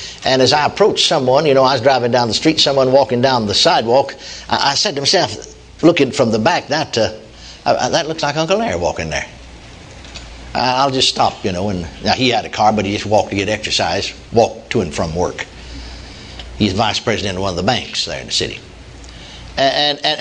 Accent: American